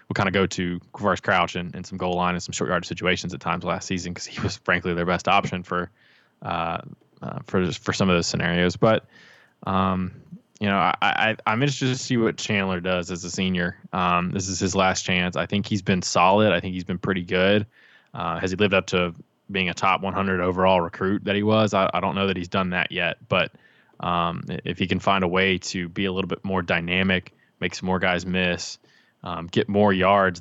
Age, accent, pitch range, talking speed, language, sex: 20-39, American, 90-95 Hz, 235 wpm, English, male